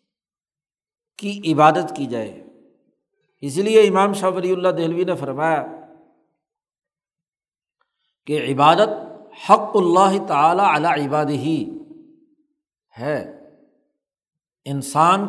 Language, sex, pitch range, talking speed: Urdu, male, 150-195 Hz, 90 wpm